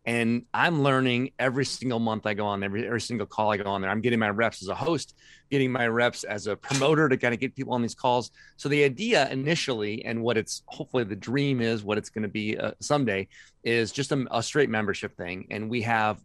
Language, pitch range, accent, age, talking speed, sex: English, 100-125 Hz, American, 30-49, 245 wpm, male